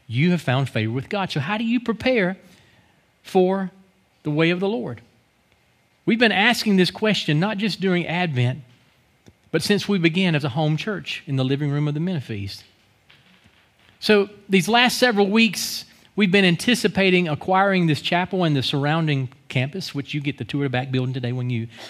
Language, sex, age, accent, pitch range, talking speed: English, male, 40-59, American, 120-180 Hz, 185 wpm